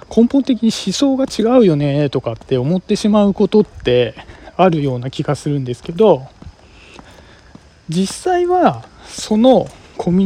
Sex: male